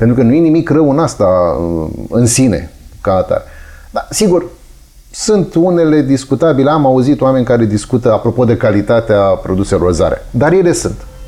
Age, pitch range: 30-49, 105-150 Hz